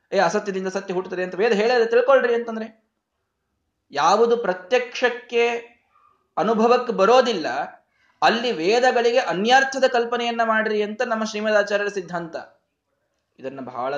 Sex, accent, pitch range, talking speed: male, native, 180-245 Hz, 105 wpm